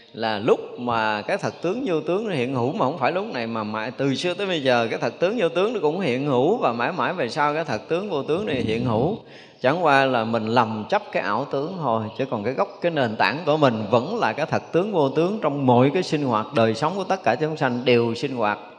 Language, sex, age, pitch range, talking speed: Vietnamese, male, 20-39, 110-150 Hz, 275 wpm